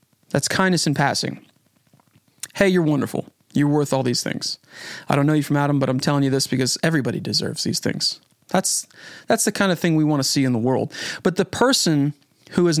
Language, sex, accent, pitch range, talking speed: English, male, American, 135-175 Hz, 215 wpm